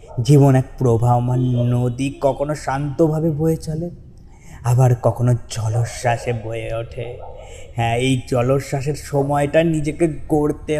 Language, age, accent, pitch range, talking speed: Bengali, 20-39, native, 115-140 Hz, 105 wpm